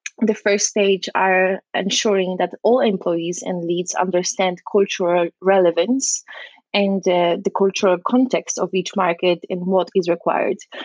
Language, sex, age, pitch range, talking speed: English, female, 20-39, 185-225 Hz, 140 wpm